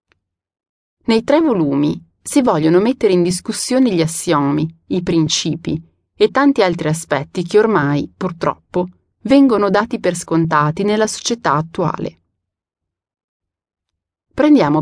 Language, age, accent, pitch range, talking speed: Italian, 30-49, native, 150-205 Hz, 110 wpm